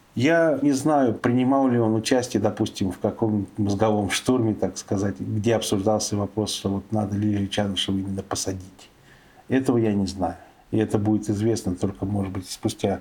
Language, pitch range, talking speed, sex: Russian, 105-115 Hz, 165 wpm, male